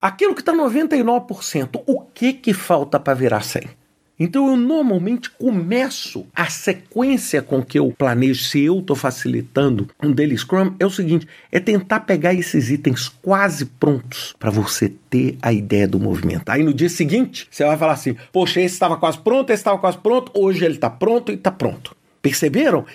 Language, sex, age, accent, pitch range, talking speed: Portuguese, male, 50-69, Brazilian, 140-210 Hz, 185 wpm